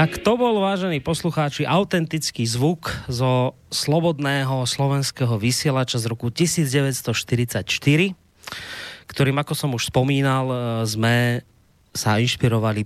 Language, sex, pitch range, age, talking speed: Slovak, male, 120-155 Hz, 30-49, 105 wpm